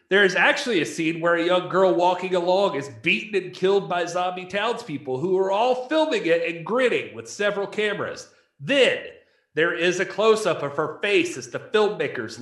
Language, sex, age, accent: English, male, 40-59, American